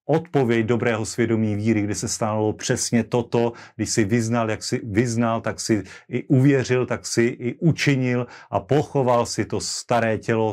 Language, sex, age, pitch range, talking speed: Slovak, male, 40-59, 105-125 Hz, 165 wpm